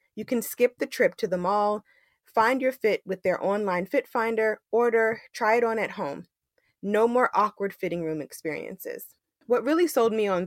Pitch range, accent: 180-230 Hz, American